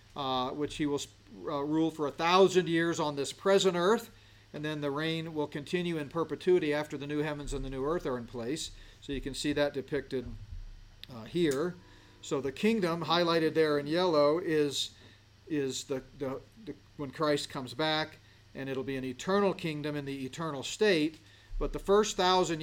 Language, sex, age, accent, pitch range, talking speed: English, male, 40-59, American, 135-170 Hz, 190 wpm